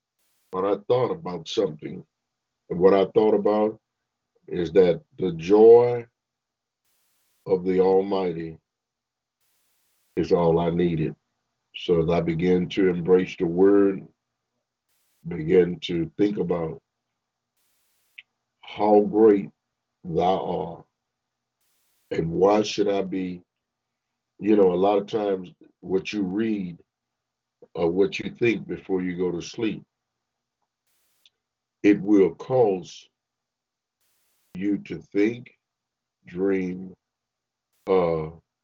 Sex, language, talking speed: male, English, 105 wpm